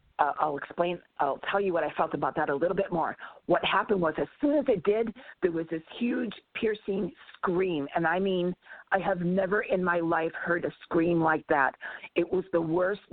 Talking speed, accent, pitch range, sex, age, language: 215 wpm, American, 160-195 Hz, female, 40-59, English